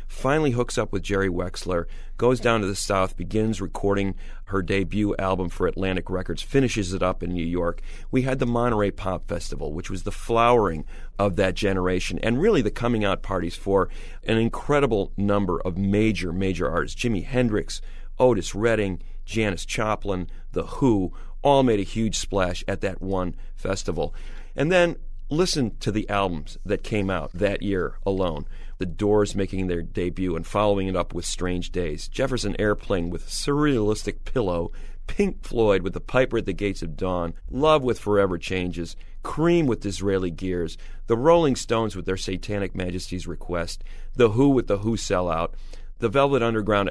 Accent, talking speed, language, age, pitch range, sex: American, 170 wpm, English, 40-59, 90-110 Hz, male